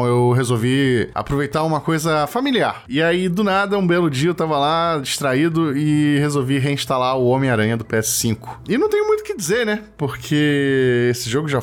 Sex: male